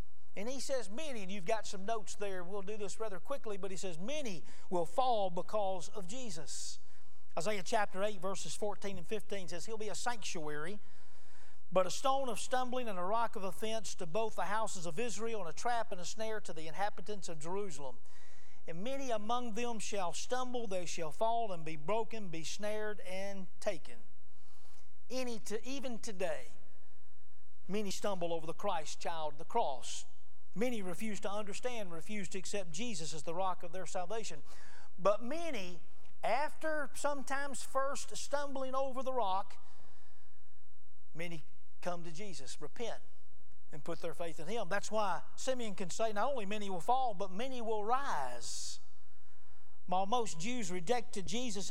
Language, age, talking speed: English, 40-59, 165 wpm